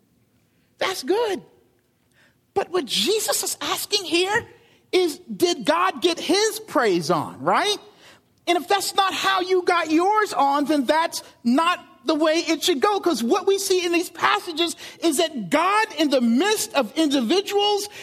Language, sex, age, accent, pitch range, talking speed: English, male, 40-59, American, 220-350 Hz, 160 wpm